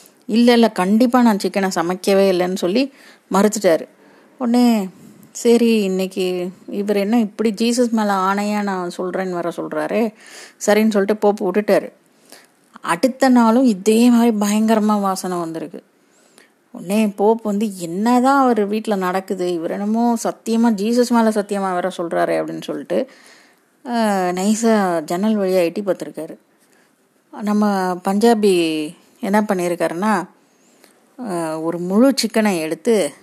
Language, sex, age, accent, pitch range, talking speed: Tamil, female, 30-49, native, 180-225 Hz, 115 wpm